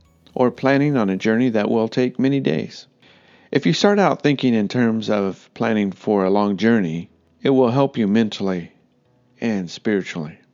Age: 50-69